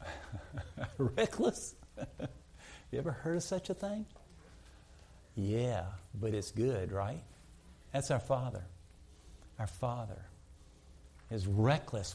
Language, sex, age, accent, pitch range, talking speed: English, male, 50-69, American, 80-110 Hz, 100 wpm